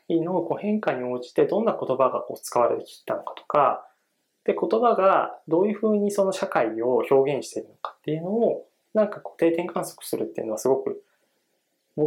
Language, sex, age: Japanese, male, 20-39